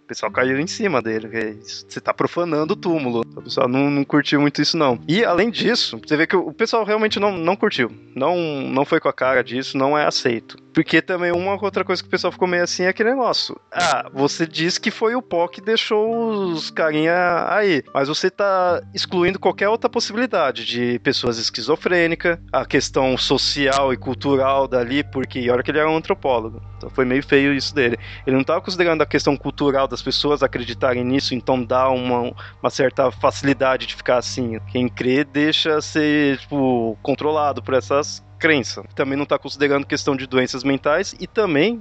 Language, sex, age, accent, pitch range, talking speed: Portuguese, male, 20-39, Brazilian, 130-165 Hz, 195 wpm